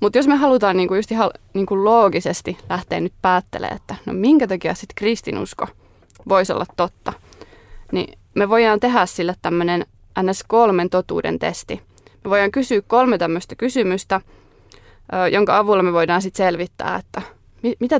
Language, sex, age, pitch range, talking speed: Finnish, female, 20-39, 175-210 Hz, 140 wpm